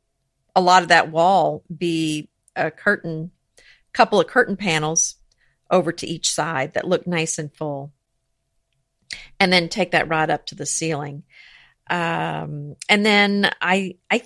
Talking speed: 150 wpm